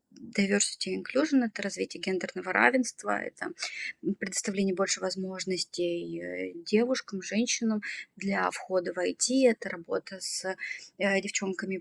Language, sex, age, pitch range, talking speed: Russian, female, 20-39, 190-220 Hz, 95 wpm